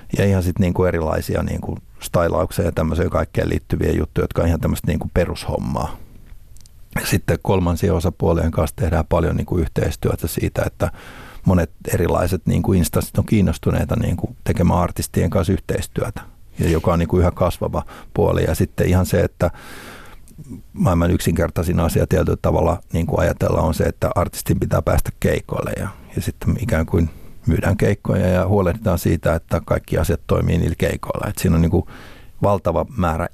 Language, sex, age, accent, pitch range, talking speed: Finnish, male, 60-79, native, 85-95 Hz, 155 wpm